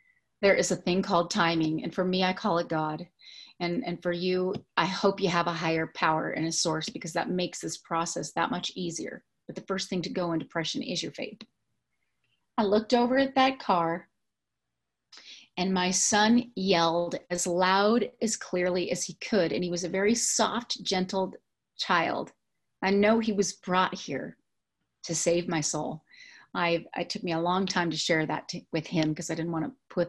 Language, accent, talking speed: English, American, 200 wpm